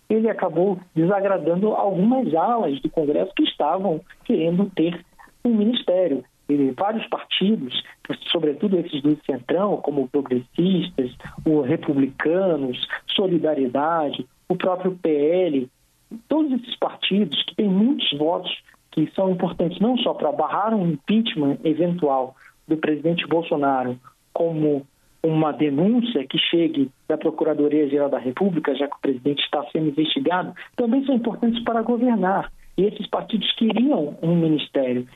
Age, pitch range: 50-69, 155-210 Hz